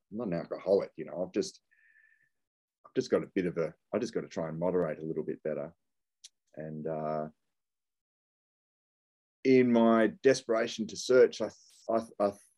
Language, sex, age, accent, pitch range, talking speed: English, male, 30-49, Australian, 85-105 Hz, 170 wpm